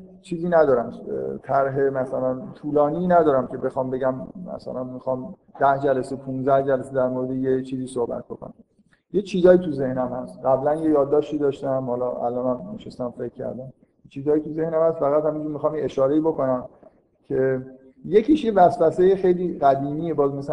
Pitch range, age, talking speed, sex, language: 130-175 Hz, 50-69, 155 wpm, male, Persian